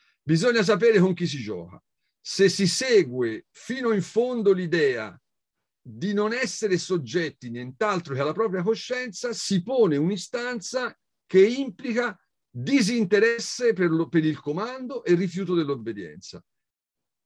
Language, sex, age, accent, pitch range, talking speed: Italian, male, 50-69, native, 130-200 Hz, 130 wpm